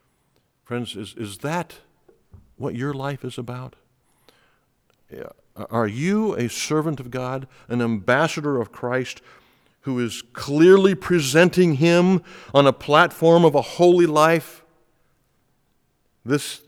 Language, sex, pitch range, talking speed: English, male, 120-155 Hz, 115 wpm